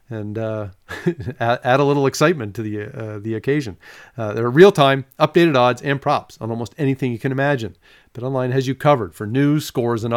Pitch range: 120-160 Hz